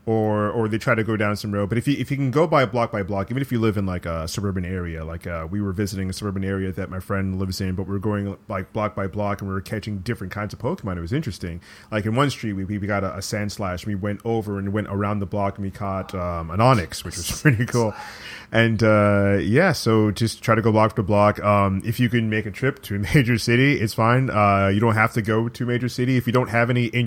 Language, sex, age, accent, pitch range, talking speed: English, male, 30-49, American, 100-120 Hz, 290 wpm